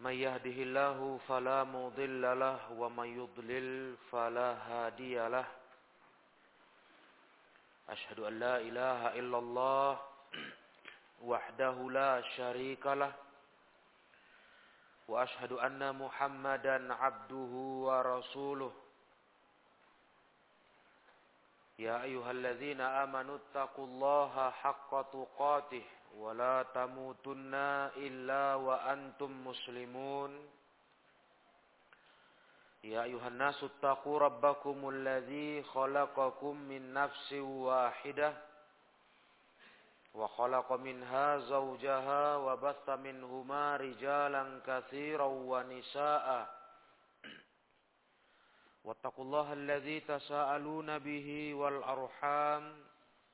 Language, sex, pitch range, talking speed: Indonesian, male, 130-140 Hz, 75 wpm